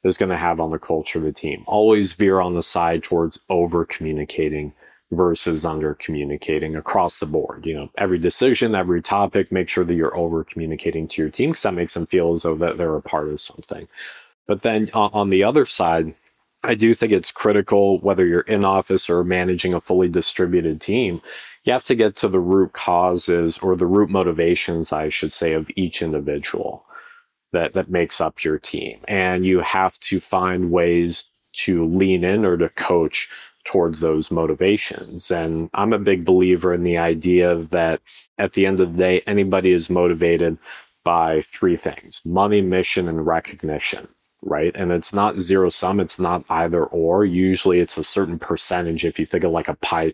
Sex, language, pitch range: male, English, 80-95 Hz